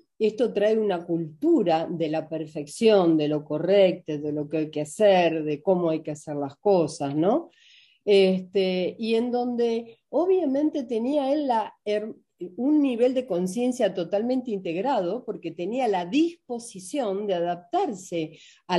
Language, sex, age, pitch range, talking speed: Spanish, female, 50-69, 170-240 Hz, 145 wpm